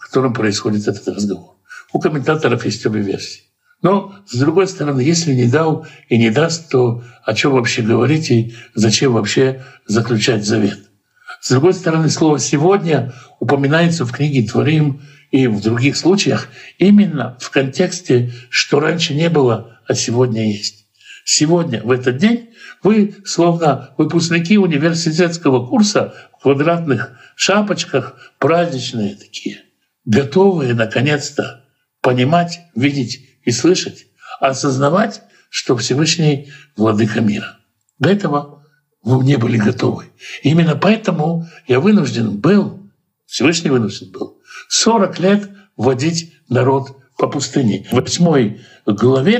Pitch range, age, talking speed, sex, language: 125-170 Hz, 60-79, 125 wpm, male, Russian